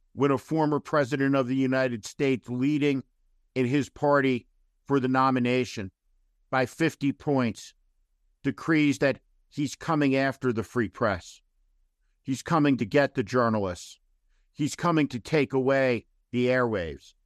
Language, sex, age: English, male, 50-69